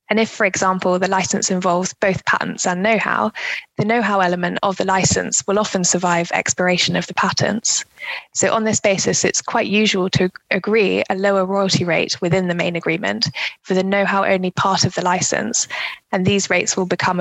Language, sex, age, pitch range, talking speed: English, female, 20-39, 180-200 Hz, 190 wpm